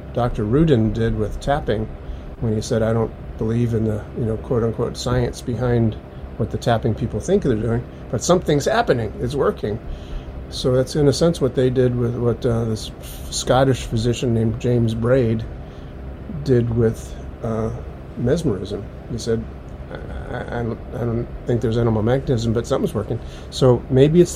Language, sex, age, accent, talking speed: English, male, 50-69, American, 165 wpm